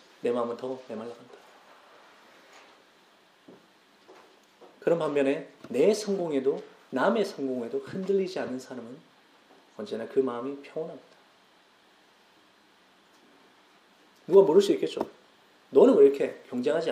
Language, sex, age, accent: Korean, male, 40-59, native